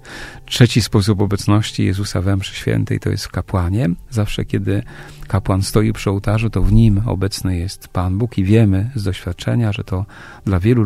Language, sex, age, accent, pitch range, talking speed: Polish, male, 40-59, native, 100-120 Hz, 170 wpm